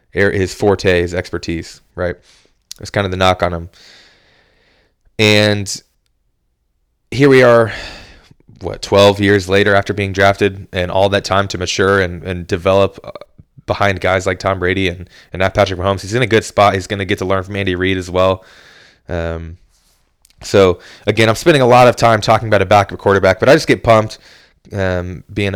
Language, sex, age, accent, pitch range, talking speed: English, male, 20-39, American, 95-115 Hz, 185 wpm